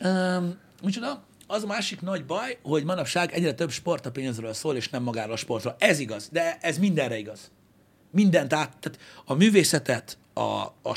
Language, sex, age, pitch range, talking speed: Hungarian, male, 60-79, 110-150 Hz, 180 wpm